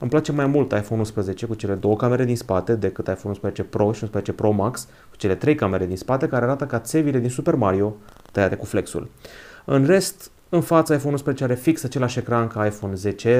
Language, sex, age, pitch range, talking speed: Romanian, male, 30-49, 105-140 Hz, 220 wpm